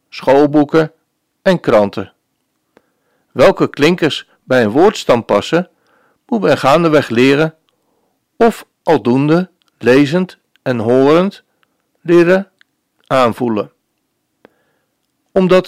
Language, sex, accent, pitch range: Dutch, male, Dutch, 125-170 Hz